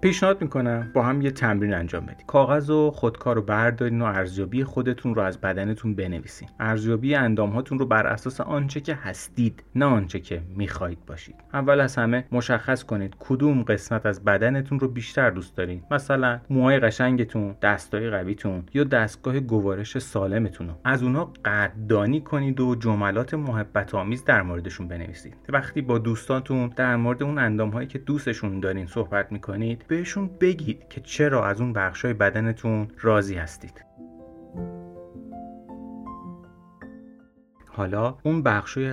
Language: Persian